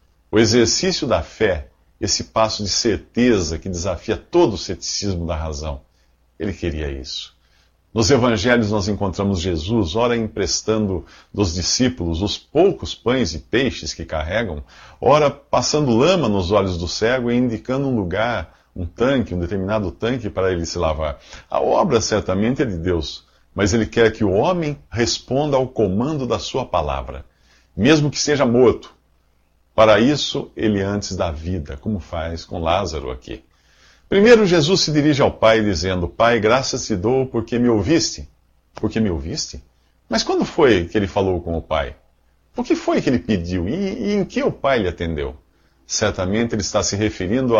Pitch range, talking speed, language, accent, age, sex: 80-115 Hz, 165 wpm, Portuguese, Brazilian, 50-69, male